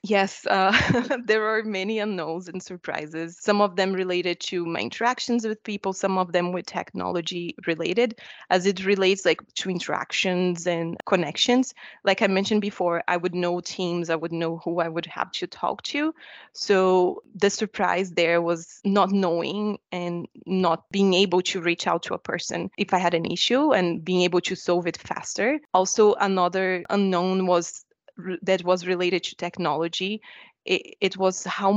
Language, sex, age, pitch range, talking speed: English, female, 20-39, 175-200 Hz, 170 wpm